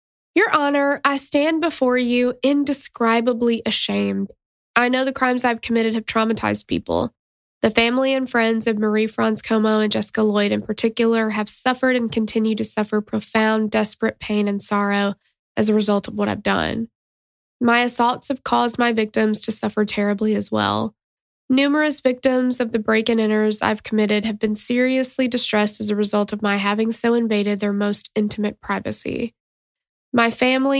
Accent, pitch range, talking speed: American, 210-245 Hz, 170 wpm